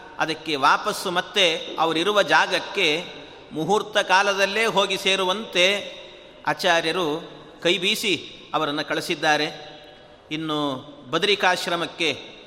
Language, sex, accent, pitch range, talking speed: Kannada, male, native, 165-195 Hz, 75 wpm